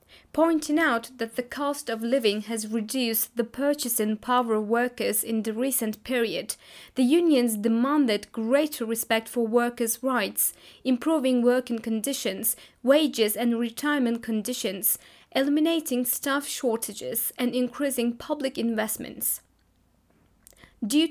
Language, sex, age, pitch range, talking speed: English, female, 20-39, 225-270 Hz, 115 wpm